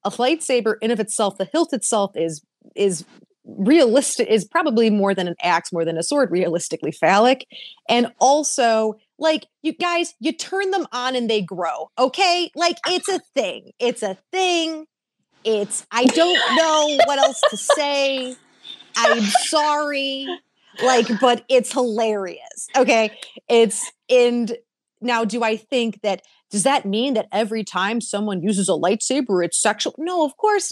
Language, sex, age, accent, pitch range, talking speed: English, female, 30-49, American, 195-265 Hz, 155 wpm